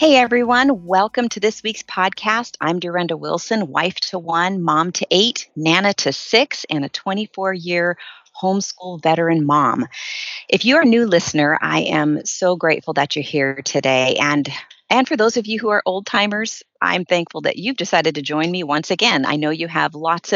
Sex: female